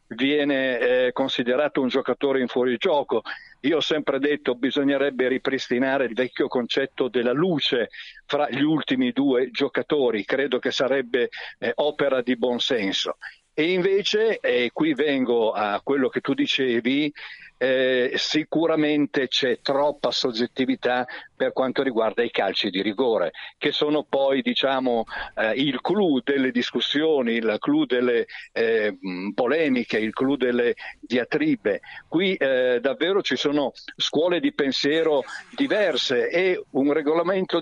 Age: 50-69